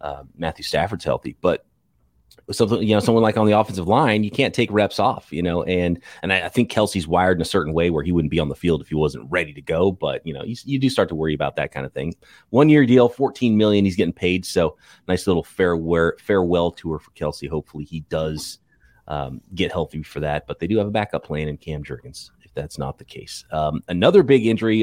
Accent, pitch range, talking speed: American, 85-110 Hz, 245 wpm